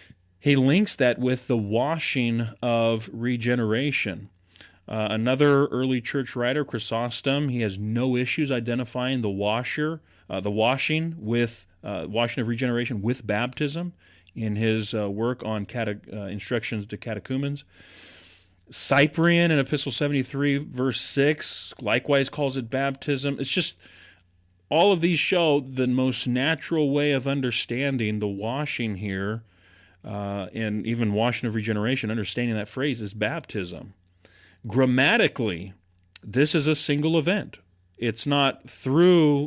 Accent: American